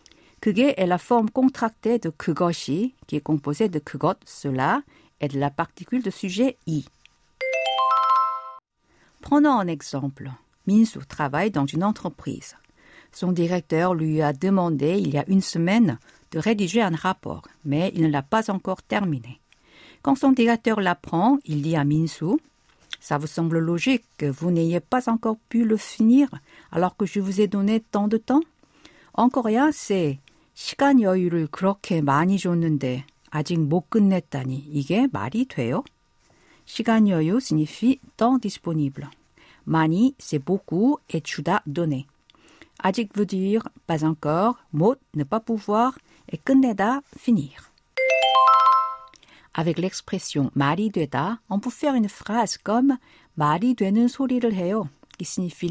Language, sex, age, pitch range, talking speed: French, female, 50-69, 160-235 Hz, 140 wpm